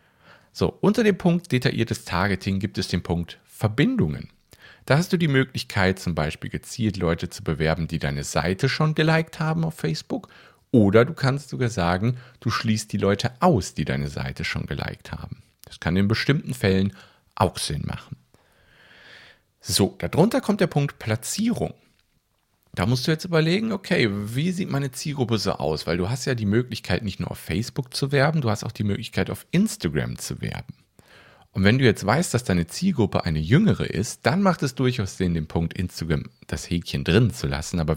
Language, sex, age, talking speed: German, male, 50-69, 185 wpm